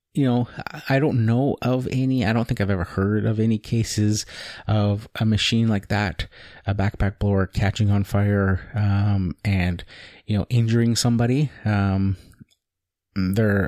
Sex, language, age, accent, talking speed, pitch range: male, English, 30-49, American, 155 wpm, 95-115 Hz